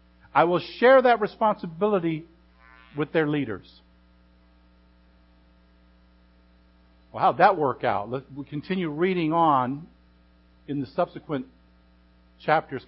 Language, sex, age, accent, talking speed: English, male, 50-69, American, 105 wpm